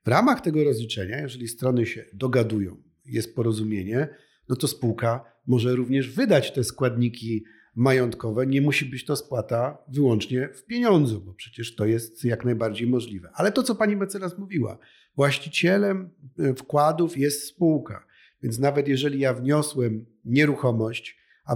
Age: 50-69